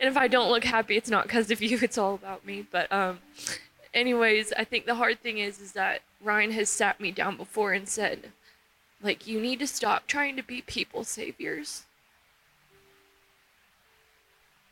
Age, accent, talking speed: 20-39, American, 180 wpm